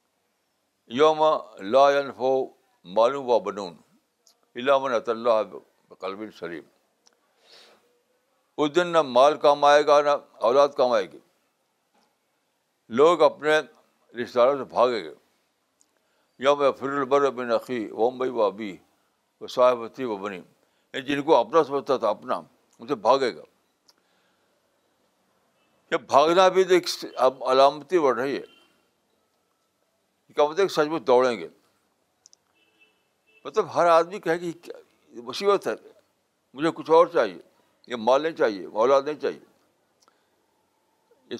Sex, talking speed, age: male, 120 wpm, 60-79